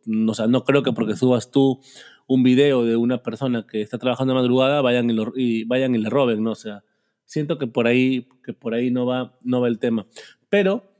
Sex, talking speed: male, 235 wpm